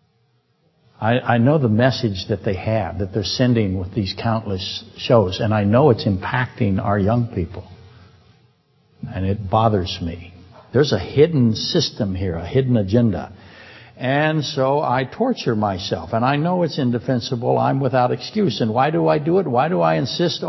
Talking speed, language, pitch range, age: 170 wpm, English, 110-145 Hz, 60-79